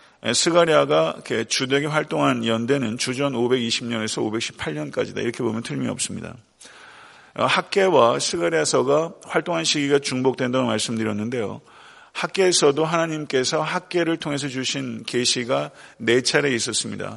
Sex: male